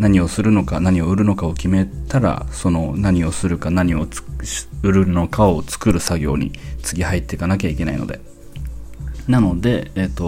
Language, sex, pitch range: Japanese, male, 85-115 Hz